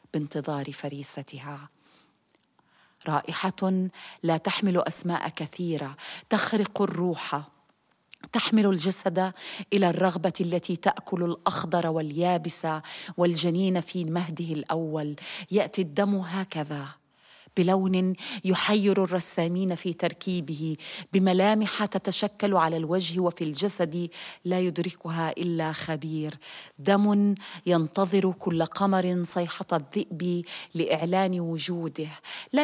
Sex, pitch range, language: female, 160-190 Hz, Dutch